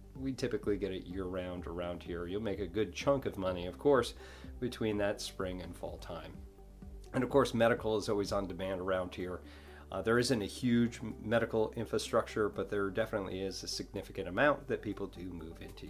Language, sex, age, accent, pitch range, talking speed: English, male, 40-59, American, 90-120 Hz, 195 wpm